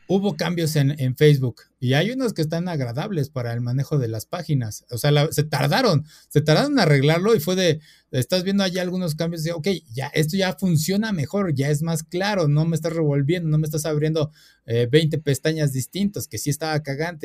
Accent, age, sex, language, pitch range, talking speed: Mexican, 30-49, male, Spanish, 130-165 Hz, 210 wpm